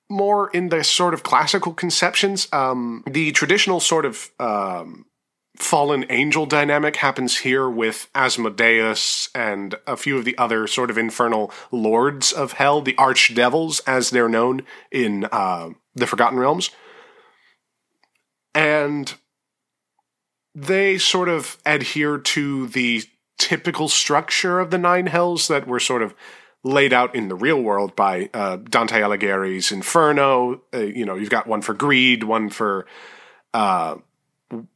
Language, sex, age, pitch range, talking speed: English, male, 30-49, 125-175 Hz, 140 wpm